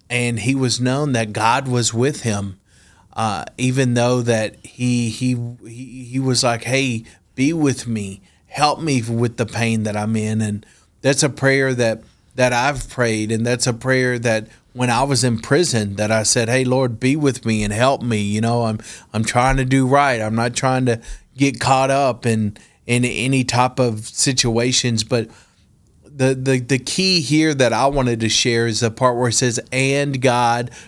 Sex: male